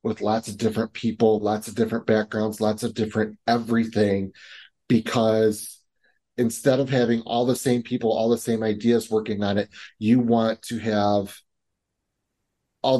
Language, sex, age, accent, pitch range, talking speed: English, male, 30-49, American, 105-120 Hz, 150 wpm